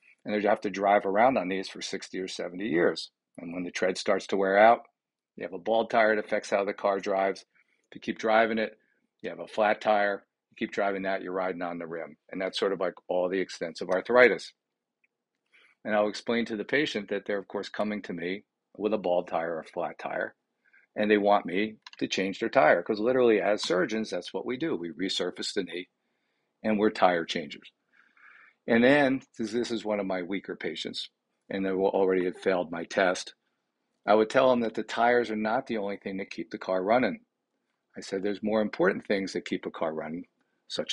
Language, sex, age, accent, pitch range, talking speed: English, male, 50-69, American, 95-110 Hz, 225 wpm